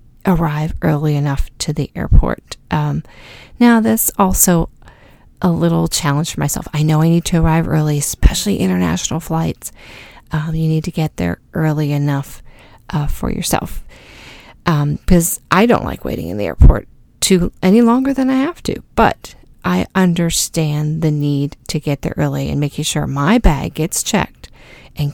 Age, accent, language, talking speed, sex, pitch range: 40-59, American, English, 165 wpm, female, 150-185 Hz